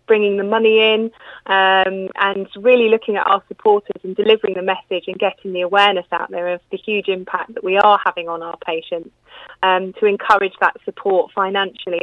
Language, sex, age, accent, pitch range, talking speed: English, female, 30-49, British, 180-220 Hz, 190 wpm